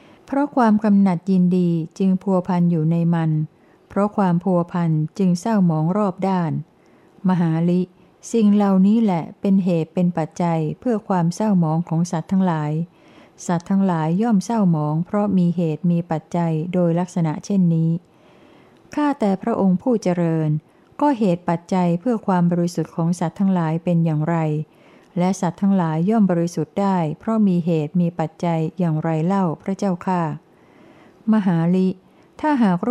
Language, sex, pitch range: Thai, female, 165-195 Hz